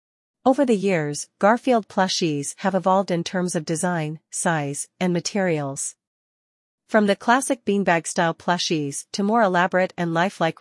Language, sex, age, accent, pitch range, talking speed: English, female, 40-59, American, 165-200 Hz, 135 wpm